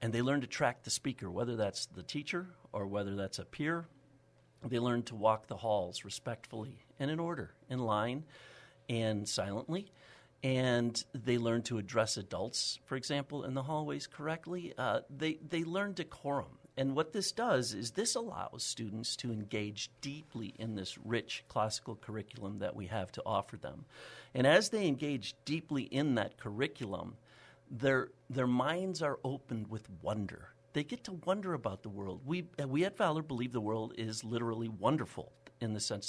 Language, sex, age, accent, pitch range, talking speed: English, male, 50-69, American, 110-145 Hz, 175 wpm